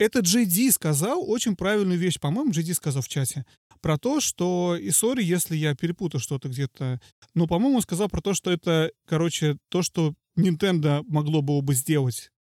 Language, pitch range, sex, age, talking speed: Russian, 150-195 Hz, male, 30-49, 175 wpm